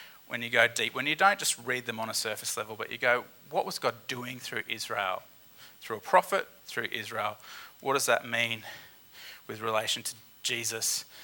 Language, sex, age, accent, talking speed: English, male, 30-49, Australian, 190 wpm